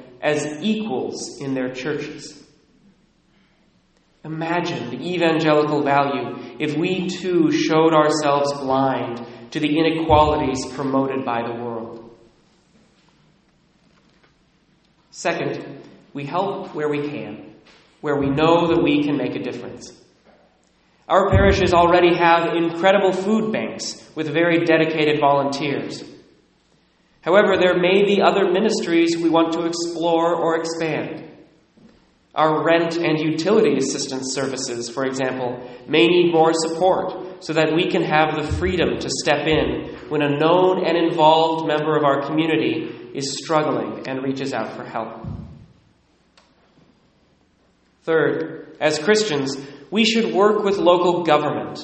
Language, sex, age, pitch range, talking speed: English, male, 30-49, 140-170 Hz, 125 wpm